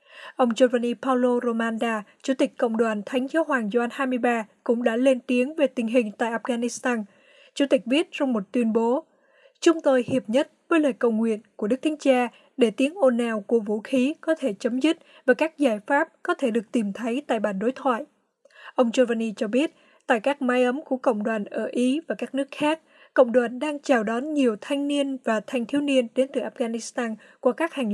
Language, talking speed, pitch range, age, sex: Vietnamese, 215 wpm, 235-275 Hz, 20-39, female